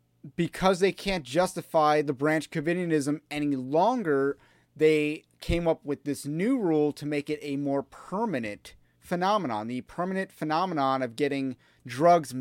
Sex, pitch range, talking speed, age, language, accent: male, 130-175 Hz, 140 wpm, 30-49, English, American